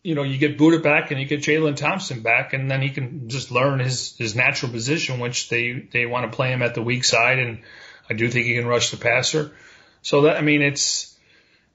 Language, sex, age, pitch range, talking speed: English, male, 40-59, 120-150 Hz, 240 wpm